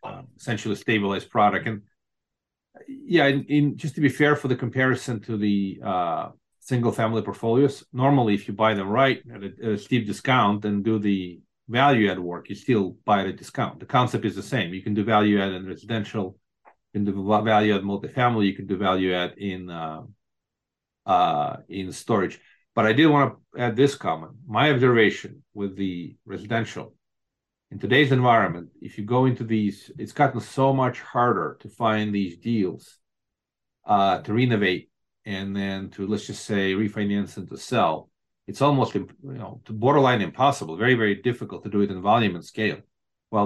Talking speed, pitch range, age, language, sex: 185 wpm, 100-125 Hz, 40-59, English, male